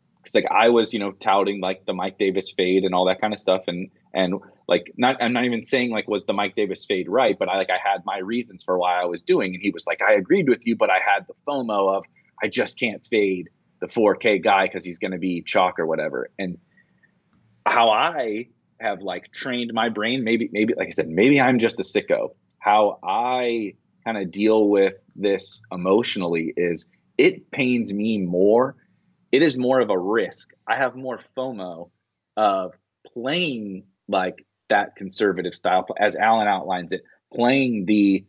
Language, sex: English, male